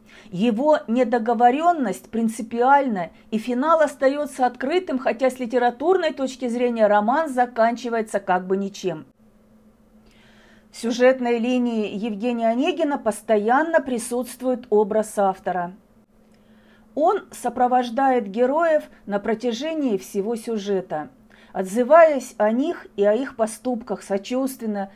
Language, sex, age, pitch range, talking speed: Russian, female, 40-59, 200-250 Hz, 100 wpm